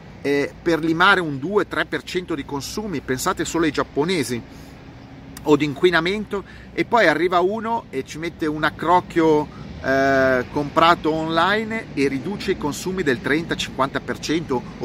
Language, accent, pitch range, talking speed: Italian, native, 130-175 Hz, 125 wpm